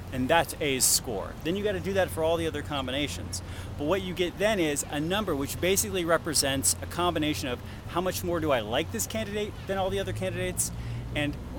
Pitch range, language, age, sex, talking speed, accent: 125-185 Hz, English, 30-49, male, 225 wpm, American